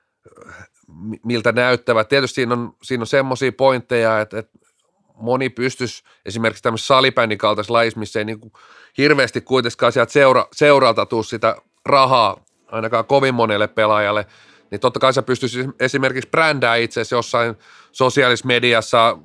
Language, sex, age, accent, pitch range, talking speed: Finnish, male, 30-49, native, 110-130 Hz, 135 wpm